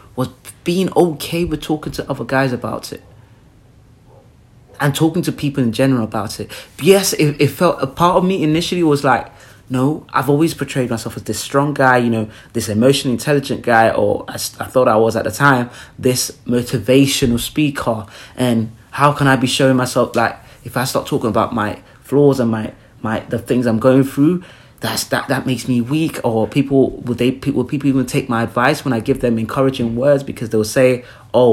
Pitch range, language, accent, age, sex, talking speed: 115-145 Hz, English, British, 20-39, male, 205 wpm